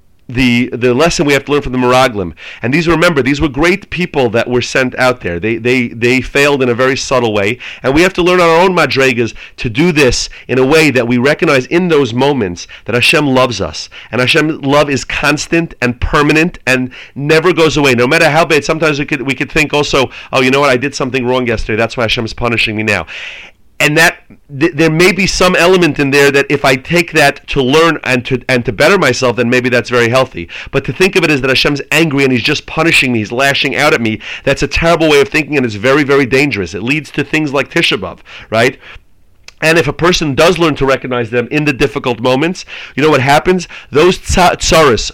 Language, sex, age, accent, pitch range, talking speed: English, male, 30-49, American, 125-160 Hz, 235 wpm